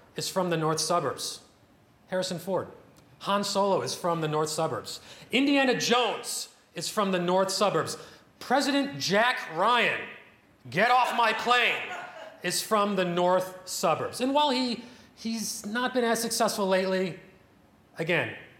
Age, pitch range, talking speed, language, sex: 30-49, 170-235 Hz, 140 wpm, English, male